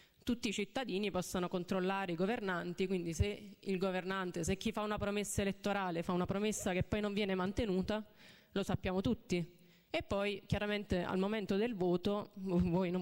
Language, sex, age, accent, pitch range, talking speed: Italian, female, 30-49, native, 180-205 Hz, 170 wpm